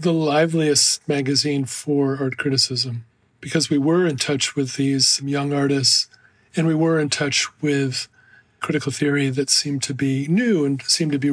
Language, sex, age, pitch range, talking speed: English, male, 40-59, 135-160 Hz, 170 wpm